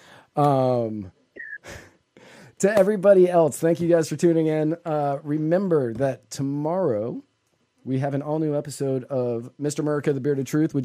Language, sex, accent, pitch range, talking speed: English, male, American, 130-155 Hz, 150 wpm